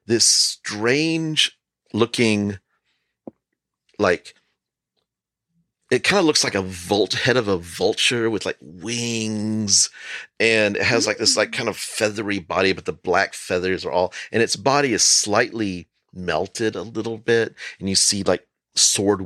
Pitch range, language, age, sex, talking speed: 90-115 Hz, English, 40-59, male, 145 wpm